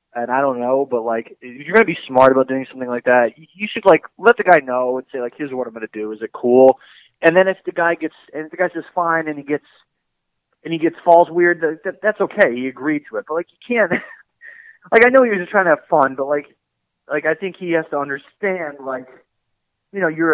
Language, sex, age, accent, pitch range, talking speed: English, male, 20-39, American, 125-170 Hz, 265 wpm